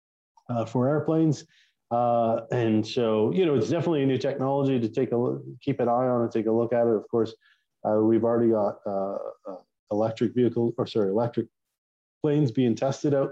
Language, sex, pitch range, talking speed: English, male, 110-130 Hz, 200 wpm